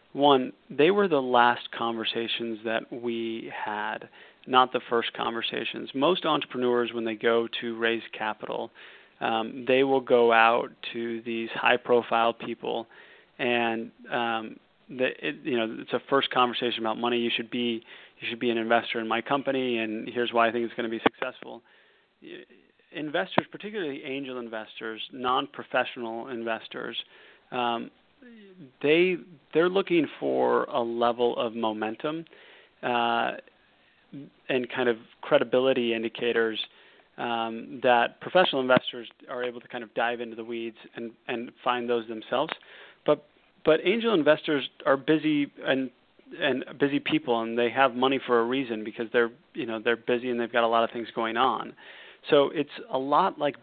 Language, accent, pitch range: English, American, 115-130 Hz